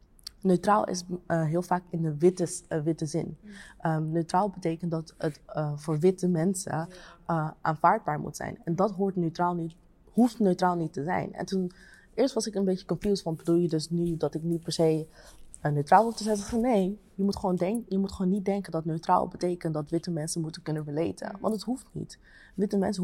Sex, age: female, 20-39